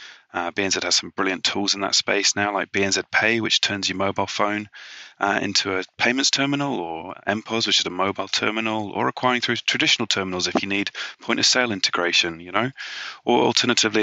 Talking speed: 195 wpm